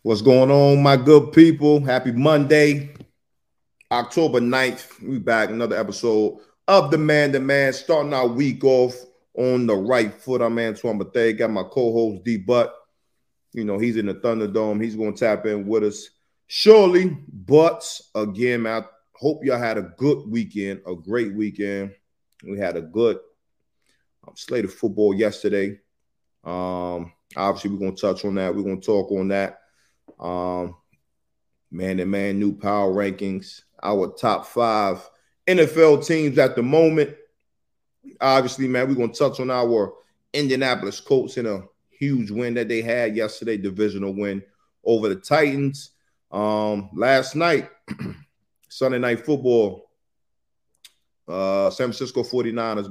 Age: 30-49